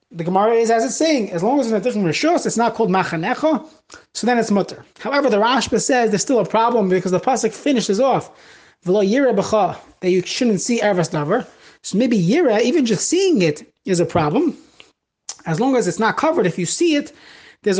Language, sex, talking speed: English, male, 210 wpm